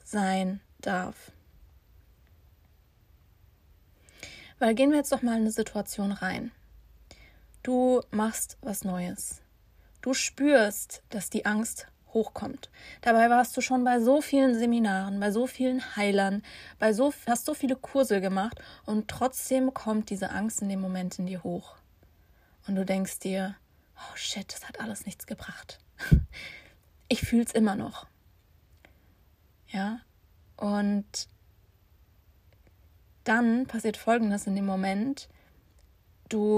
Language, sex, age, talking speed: German, female, 20-39, 125 wpm